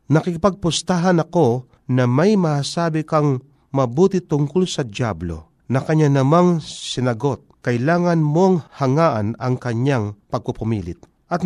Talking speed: 110 wpm